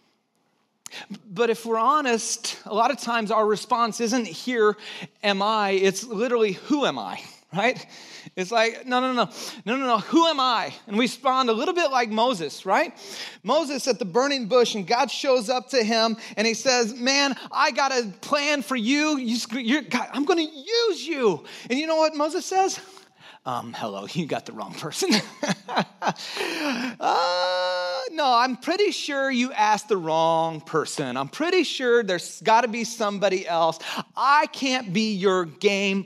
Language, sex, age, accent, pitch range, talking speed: English, male, 30-49, American, 220-300 Hz, 175 wpm